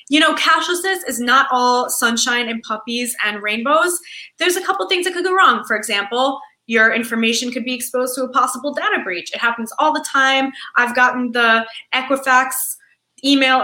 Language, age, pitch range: English, 20-39, 215-290 Hz